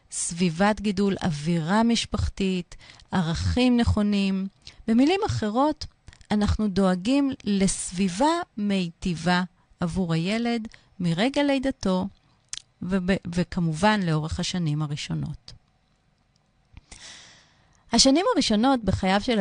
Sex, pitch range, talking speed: female, 165-215 Hz, 75 wpm